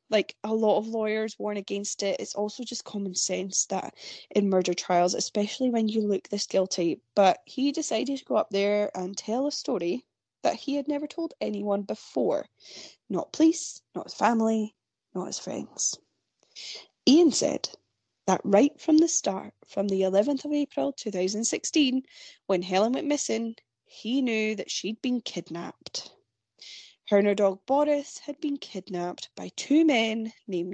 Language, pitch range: English, 195-270 Hz